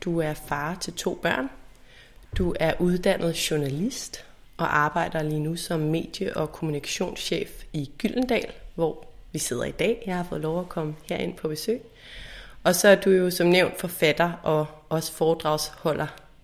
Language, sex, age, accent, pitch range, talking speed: Danish, female, 30-49, native, 160-185 Hz, 165 wpm